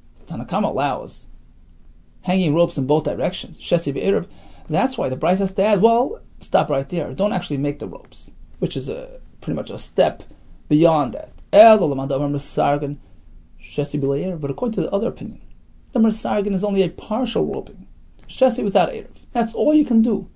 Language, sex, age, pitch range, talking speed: English, male, 30-49, 140-215 Hz, 150 wpm